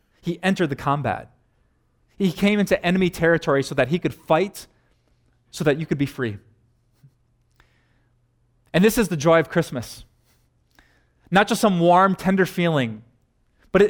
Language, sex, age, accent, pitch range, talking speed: English, male, 30-49, American, 130-180 Hz, 145 wpm